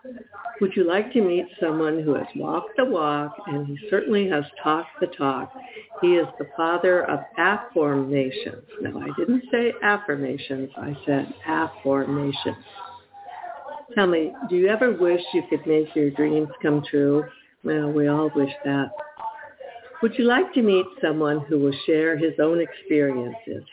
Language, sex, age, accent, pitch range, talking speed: English, female, 60-79, American, 145-195 Hz, 155 wpm